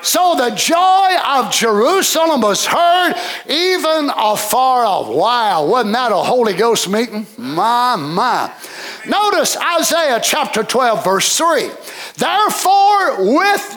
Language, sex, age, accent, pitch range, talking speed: English, male, 50-69, American, 240-340 Hz, 120 wpm